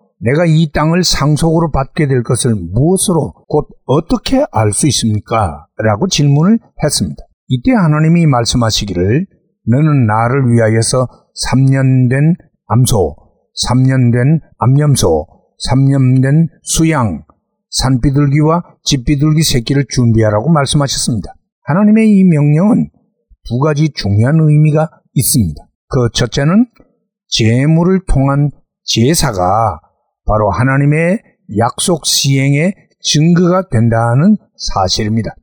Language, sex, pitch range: Korean, male, 120-170 Hz